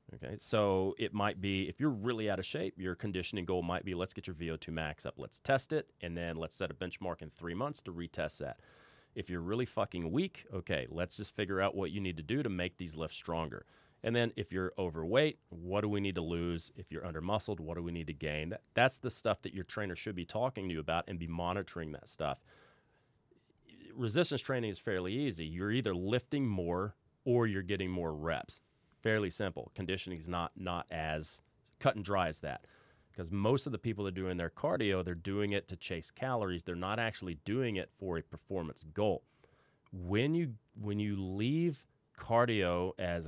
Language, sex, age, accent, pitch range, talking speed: English, male, 30-49, American, 90-115 Hz, 210 wpm